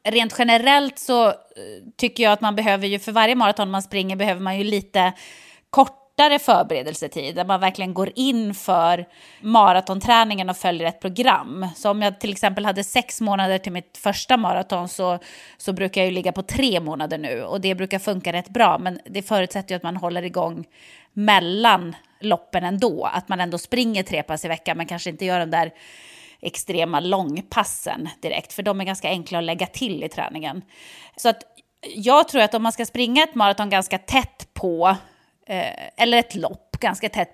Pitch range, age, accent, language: 180-230 Hz, 30-49, Swedish, English